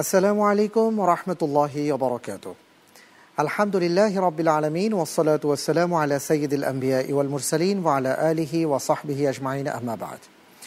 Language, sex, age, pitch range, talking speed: Bengali, male, 50-69, 140-195 Hz, 120 wpm